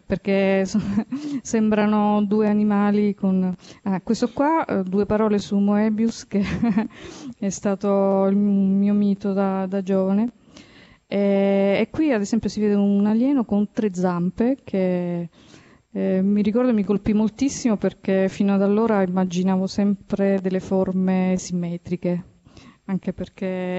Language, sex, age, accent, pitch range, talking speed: Italian, female, 20-39, native, 190-210 Hz, 125 wpm